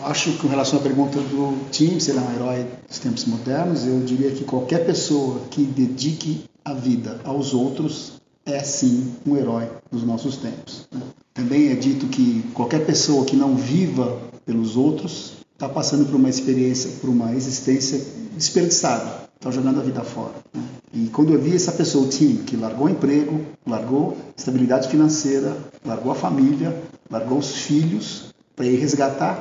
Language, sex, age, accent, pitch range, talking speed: Portuguese, male, 50-69, Brazilian, 130-155 Hz, 170 wpm